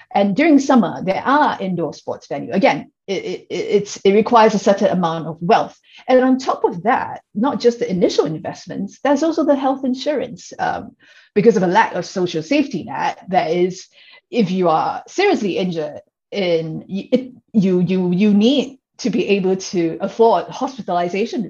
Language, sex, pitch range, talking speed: English, female, 180-260 Hz, 175 wpm